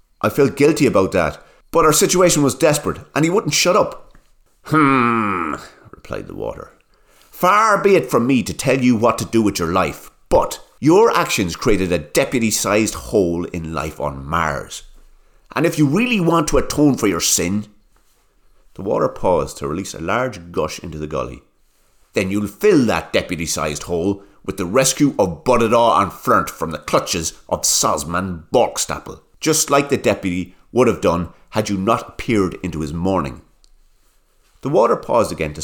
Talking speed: 175 wpm